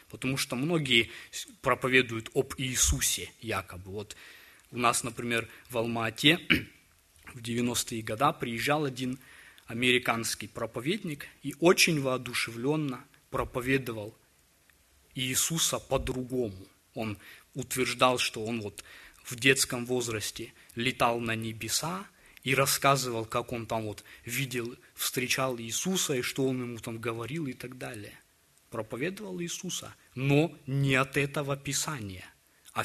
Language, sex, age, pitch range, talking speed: Russian, male, 20-39, 115-140 Hz, 115 wpm